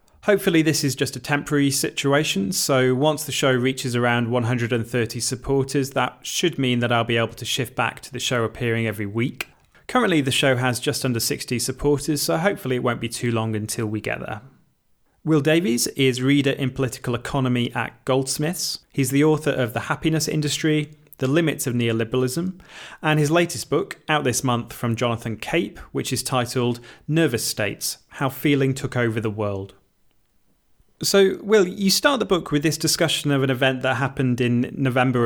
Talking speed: 180 wpm